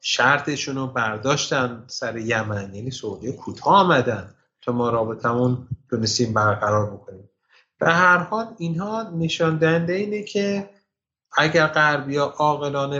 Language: Persian